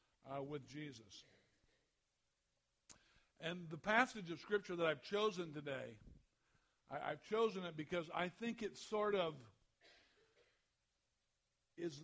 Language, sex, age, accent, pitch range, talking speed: English, male, 60-79, American, 130-170 Hz, 115 wpm